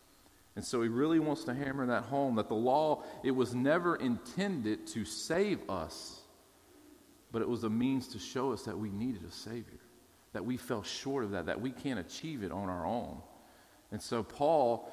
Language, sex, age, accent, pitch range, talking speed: English, male, 40-59, American, 110-140 Hz, 195 wpm